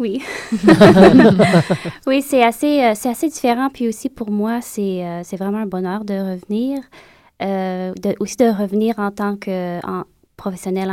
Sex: female